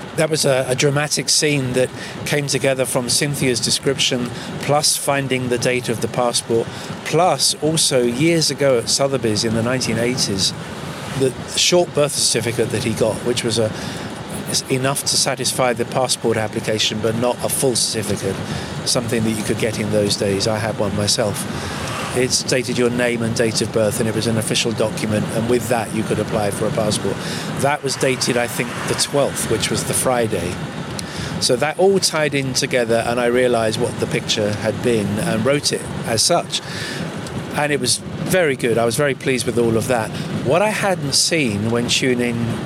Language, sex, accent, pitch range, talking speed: Dutch, male, British, 115-145 Hz, 185 wpm